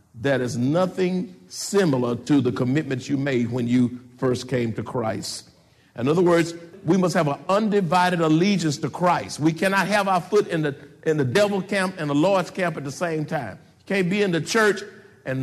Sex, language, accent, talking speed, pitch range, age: male, English, American, 200 wpm, 140-195 Hz, 50-69